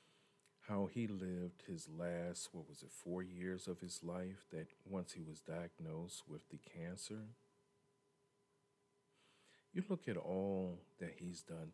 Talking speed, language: 145 wpm, English